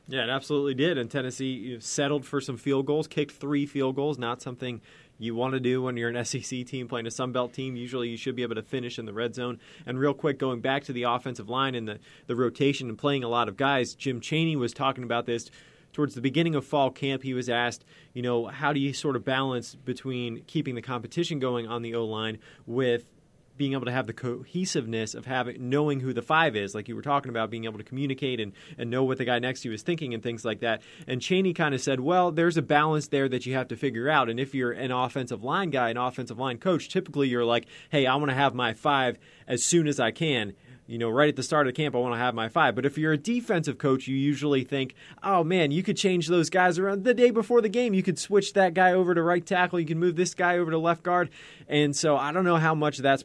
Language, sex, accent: English, male, American